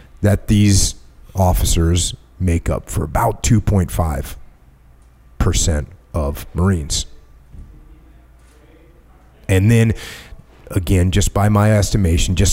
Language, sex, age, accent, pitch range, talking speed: English, male, 30-49, American, 65-100 Hz, 90 wpm